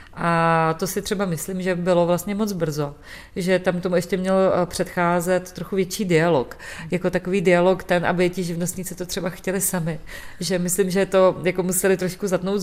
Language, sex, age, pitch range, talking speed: Czech, female, 40-59, 170-185 Hz, 180 wpm